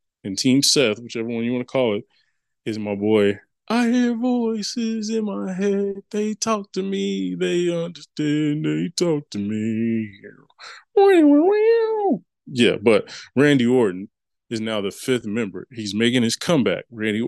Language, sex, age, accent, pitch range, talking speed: English, male, 20-39, American, 105-135 Hz, 150 wpm